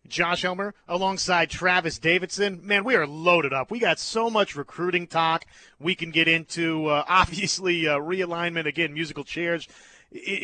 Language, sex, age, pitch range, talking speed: English, male, 30-49, 155-195 Hz, 160 wpm